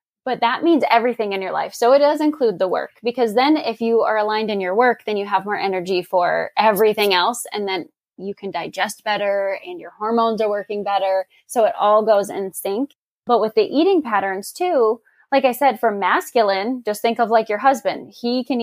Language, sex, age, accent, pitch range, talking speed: English, female, 10-29, American, 205-250 Hz, 215 wpm